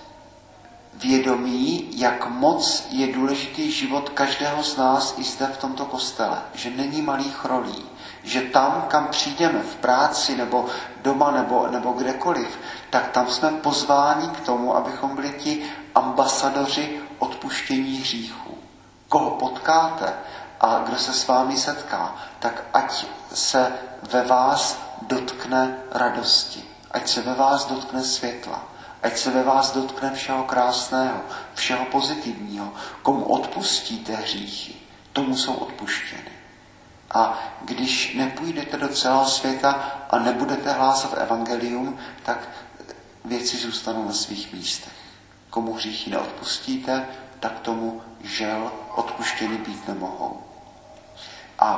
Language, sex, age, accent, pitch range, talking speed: Czech, male, 40-59, native, 125-140 Hz, 120 wpm